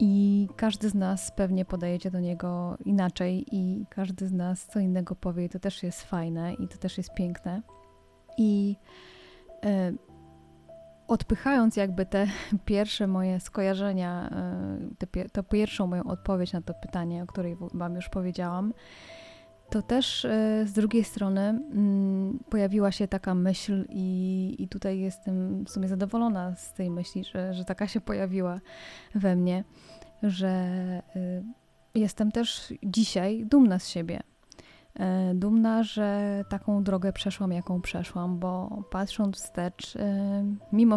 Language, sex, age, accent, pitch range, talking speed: Polish, female, 20-39, native, 180-205 Hz, 135 wpm